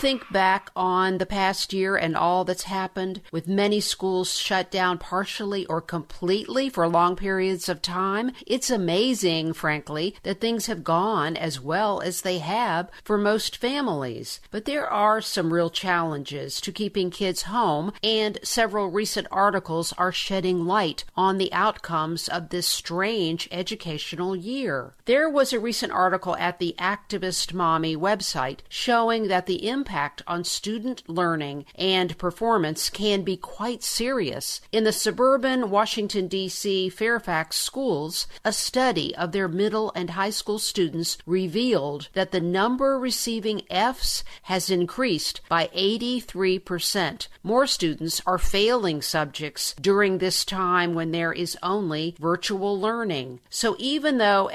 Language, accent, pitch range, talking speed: English, American, 170-215 Hz, 145 wpm